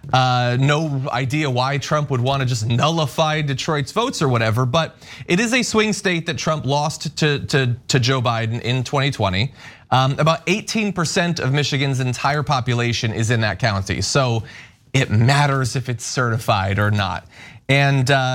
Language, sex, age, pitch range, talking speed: English, male, 30-49, 120-155 Hz, 165 wpm